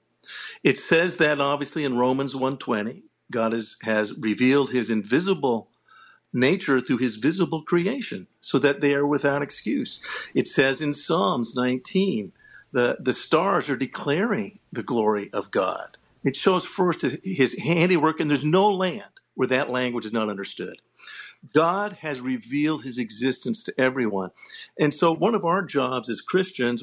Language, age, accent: English, 50-69, American